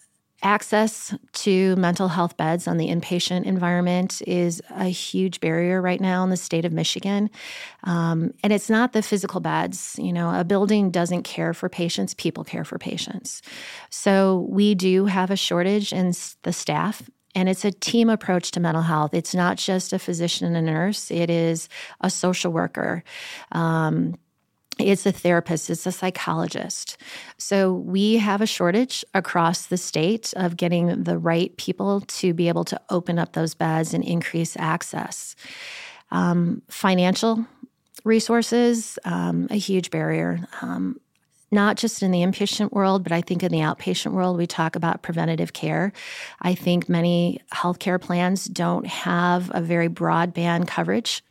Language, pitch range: English, 170-200 Hz